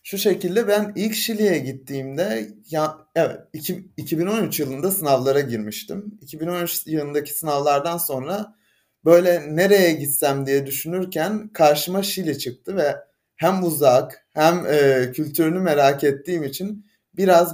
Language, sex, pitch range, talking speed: Turkish, male, 135-190 Hz, 120 wpm